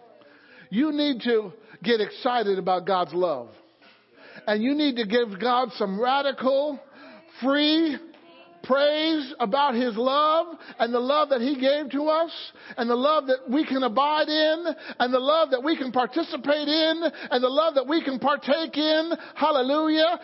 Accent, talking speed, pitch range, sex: American, 160 wpm, 245-305 Hz, male